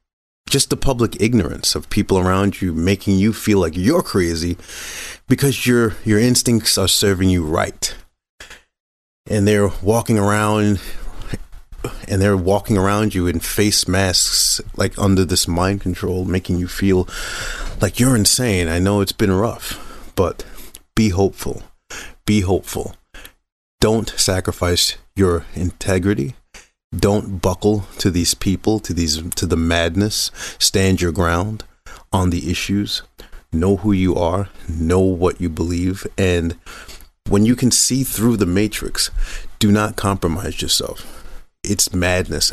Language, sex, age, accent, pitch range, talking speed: English, male, 30-49, American, 85-105 Hz, 135 wpm